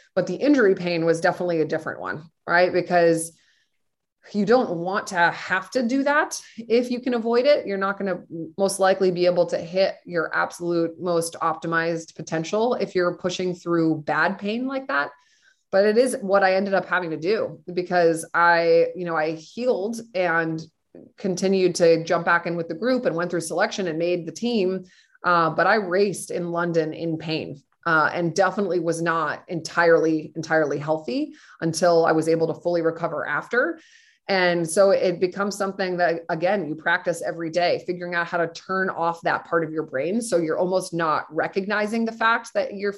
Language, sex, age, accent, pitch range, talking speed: English, female, 20-39, American, 165-195 Hz, 190 wpm